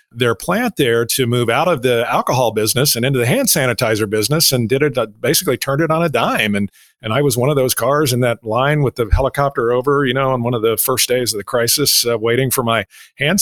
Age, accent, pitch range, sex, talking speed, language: 40-59, American, 105-130 Hz, male, 250 wpm, English